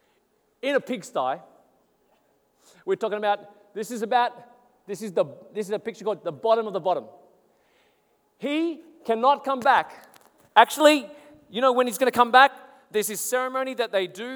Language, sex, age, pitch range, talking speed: English, male, 40-59, 195-240 Hz, 175 wpm